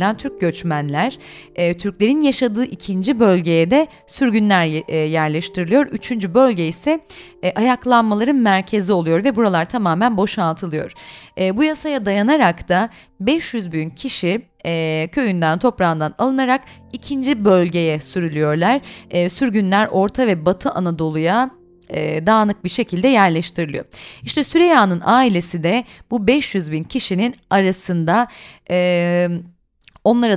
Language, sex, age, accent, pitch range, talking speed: Turkish, female, 30-49, native, 175-235 Hz, 115 wpm